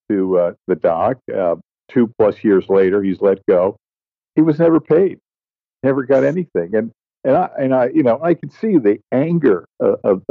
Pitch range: 95-125 Hz